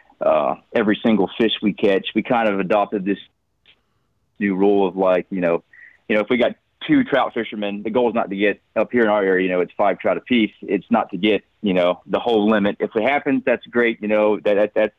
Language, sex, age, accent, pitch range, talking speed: English, male, 30-49, American, 95-115 Hz, 250 wpm